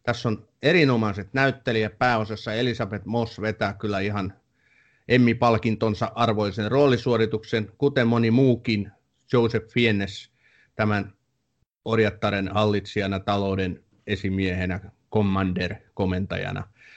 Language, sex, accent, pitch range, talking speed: Finnish, male, native, 100-120 Hz, 85 wpm